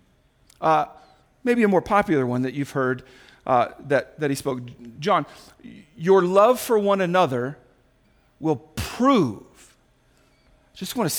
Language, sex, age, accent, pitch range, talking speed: English, male, 50-69, American, 140-195 Hz, 135 wpm